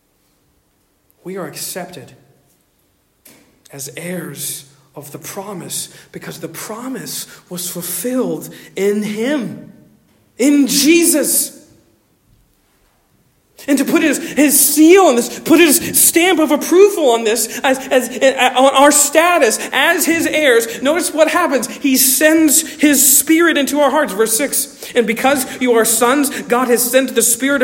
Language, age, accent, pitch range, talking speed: English, 40-59, American, 205-310 Hz, 135 wpm